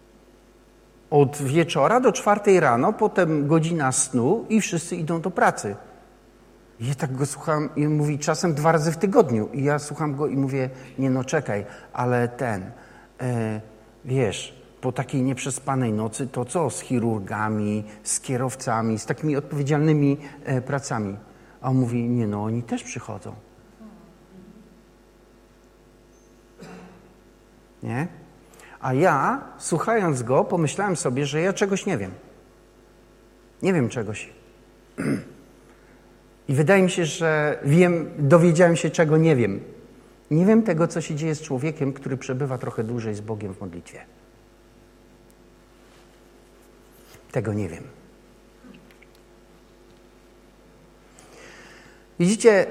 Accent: native